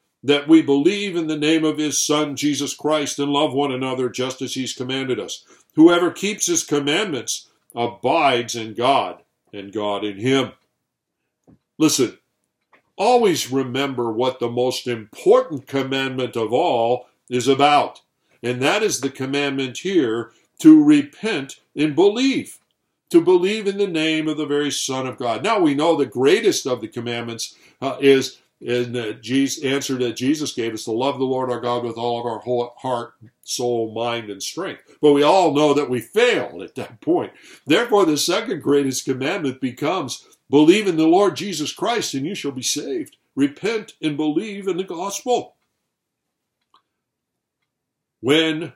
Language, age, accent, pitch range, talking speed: English, 60-79, American, 125-160 Hz, 160 wpm